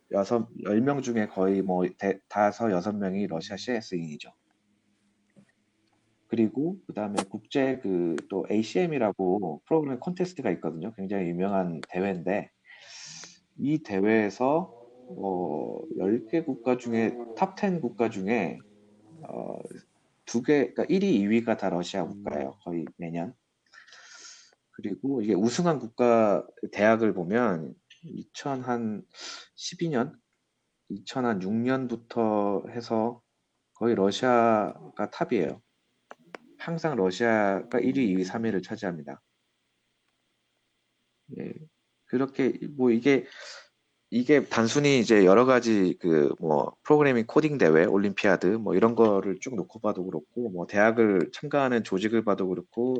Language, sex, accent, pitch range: Korean, male, native, 95-120 Hz